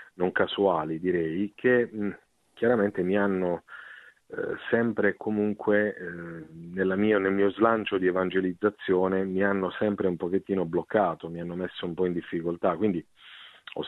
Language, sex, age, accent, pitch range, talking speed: Italian, male, 40-59, native, 85-105 Hz, 145 wpm